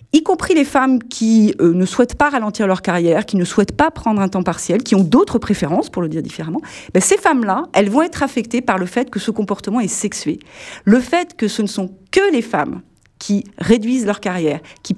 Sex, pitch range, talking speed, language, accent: female, 180-235 Hz, 230 wpm, French, French